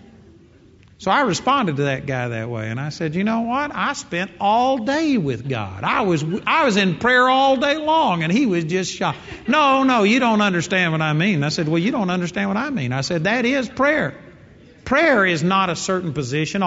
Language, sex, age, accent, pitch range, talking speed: English, male, 50-69, American, 155-200 Hz, 225 wpm